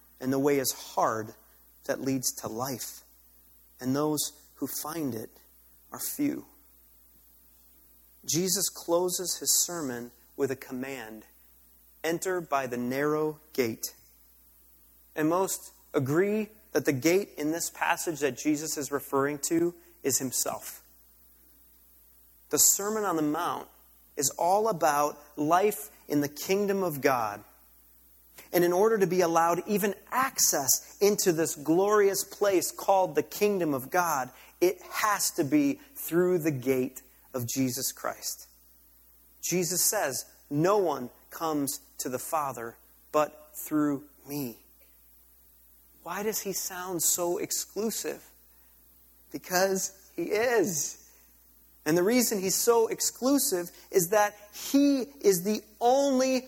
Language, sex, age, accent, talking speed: English, male, 30-49, American, 125 wpm